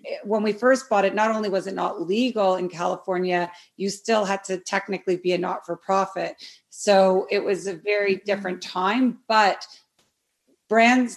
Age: 30-49